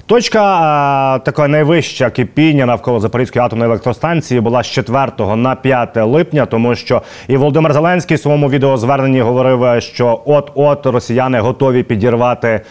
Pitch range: 115-140 Hz